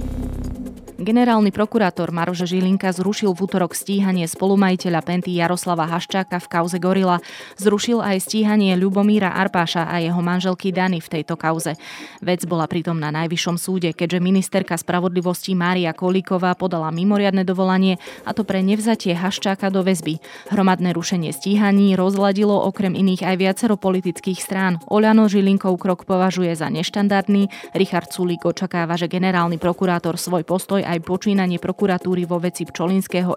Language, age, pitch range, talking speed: Slovak, 20-39, 175-195 Hz, 140 wpm